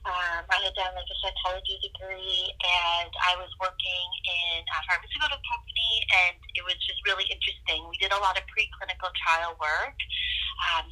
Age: 30-49